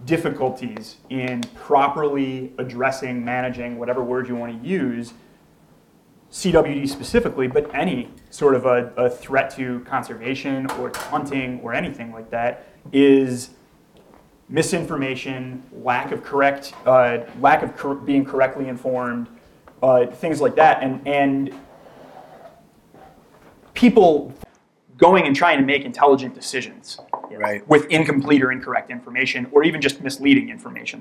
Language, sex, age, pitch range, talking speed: English, male, 30-49, 125-140 Hz, 130 wpm